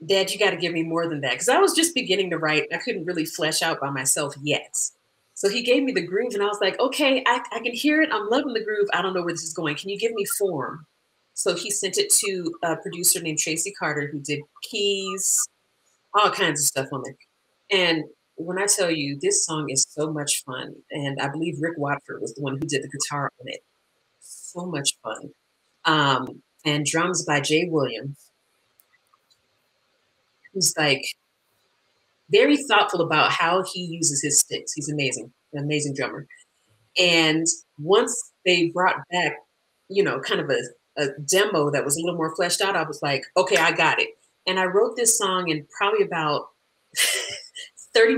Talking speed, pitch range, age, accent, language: 195 wpm, 150-200 Hz, 30-49, American, English